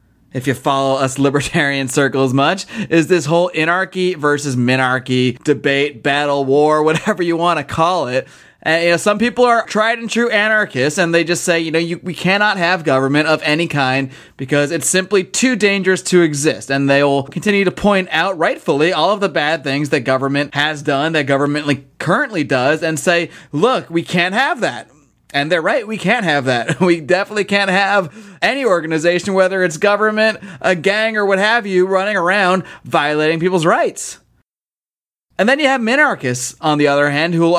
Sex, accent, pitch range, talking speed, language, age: male, American, 145-190 Hz, 190 wpm, English, 30-49